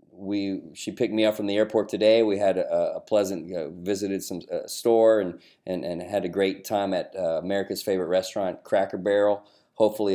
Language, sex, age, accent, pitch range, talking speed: English, male, 40-59, American, 90-105 Hz, 205 wpm